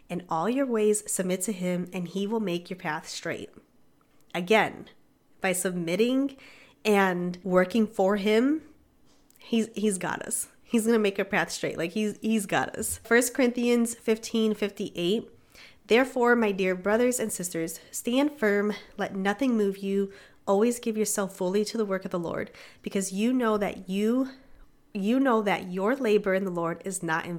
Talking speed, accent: 175 wpm, American